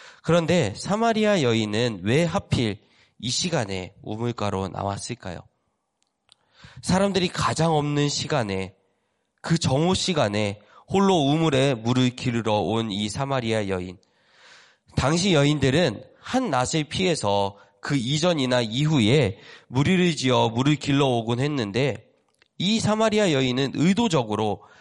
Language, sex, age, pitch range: Korean, male, 30-49, 110-170 Hz